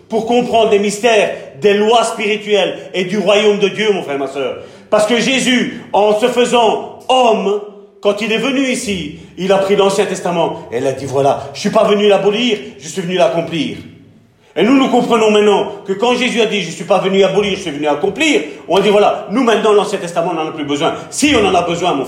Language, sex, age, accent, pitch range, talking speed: French, male, 40-59, French, 165-225 Hz, 240 wpm